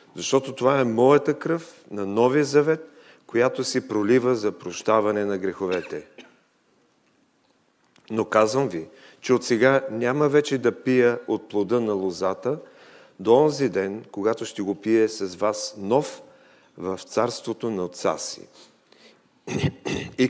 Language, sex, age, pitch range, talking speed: English, male, 50-69, 100-135 Hz, 135 wpm